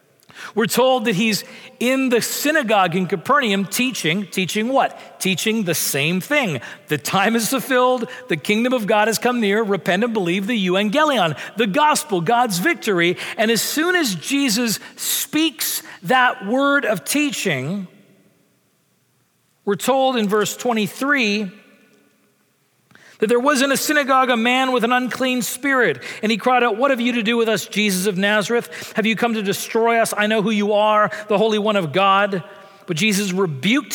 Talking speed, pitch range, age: 170 wpm, 200-245 Hz, 40-59